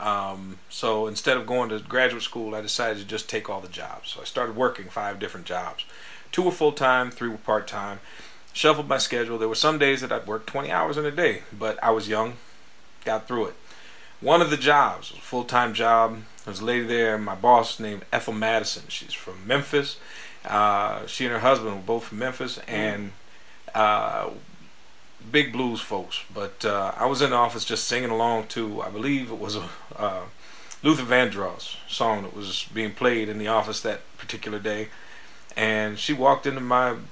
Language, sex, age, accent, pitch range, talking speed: English, male, 40-59, American, 110-125 Hz, 200 wpm